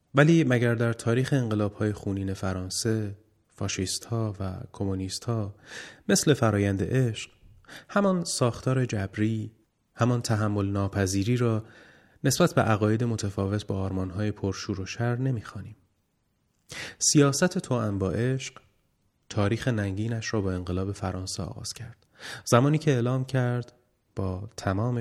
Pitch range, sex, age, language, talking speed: 95-120 Hz, male, 30-49, English, 125 wpm